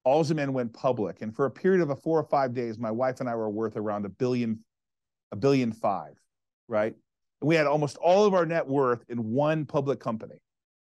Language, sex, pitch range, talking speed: English, male, 120-150 Hz, 215 wpm